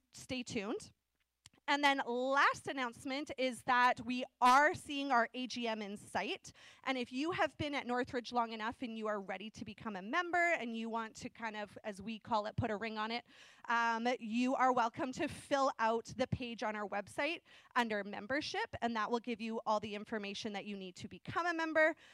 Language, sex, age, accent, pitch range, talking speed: English, female, 20-39, American, 220-285 Hz, 205 wpm